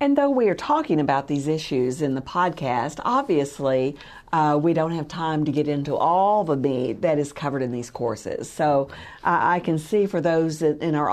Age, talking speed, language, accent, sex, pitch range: 50-69, 205 wpm, English, American, female, 140-190 Hz